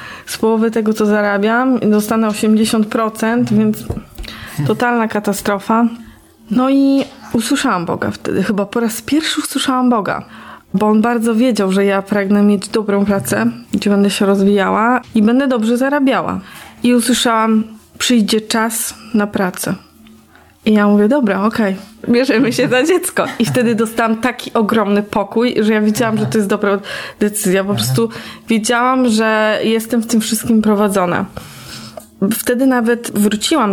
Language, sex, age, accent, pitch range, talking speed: Polish, female, 20-39, native, 205-240 Hz, 145 wpm